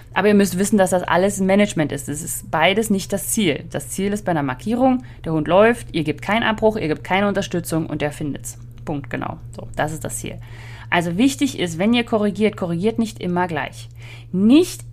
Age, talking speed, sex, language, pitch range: 30-49, 215 wpm, female, German, 160-230 Hz